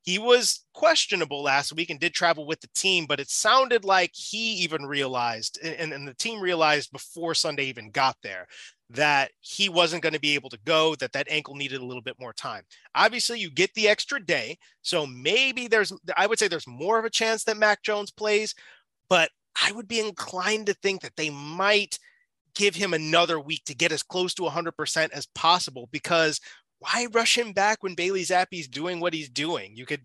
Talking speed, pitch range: 210 wpm, 150-205 Hz